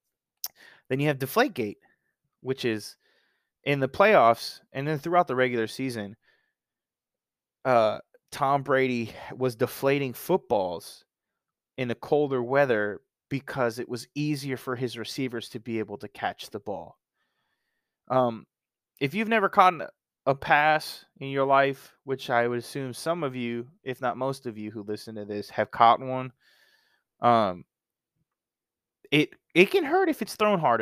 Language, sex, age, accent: English, male, 20-39, American